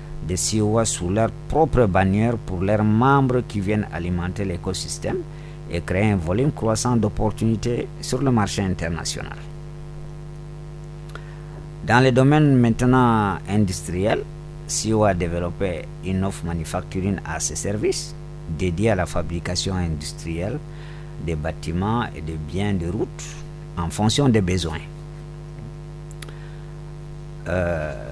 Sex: male